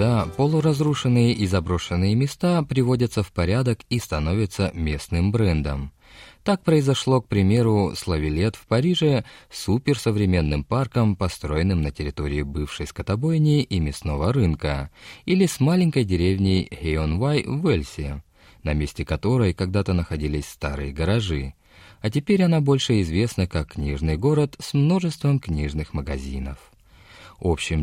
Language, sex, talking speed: Russian, male, 125 wpm